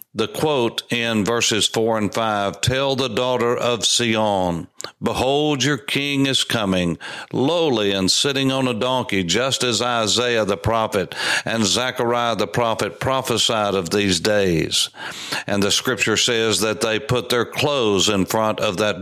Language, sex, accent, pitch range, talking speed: English, male, American, 105-125 Hz, 155 wpm